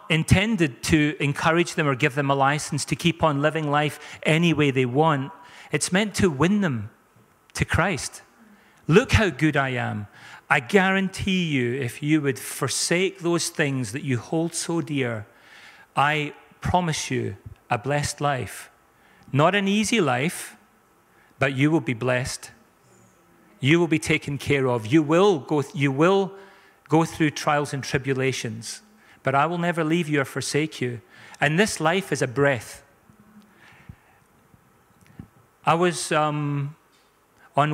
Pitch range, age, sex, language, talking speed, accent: 130-160 Hz, 40-59, male, English, 150 wpm, British